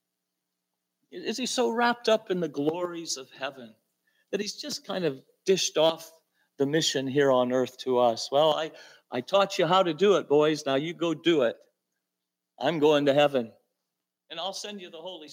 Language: English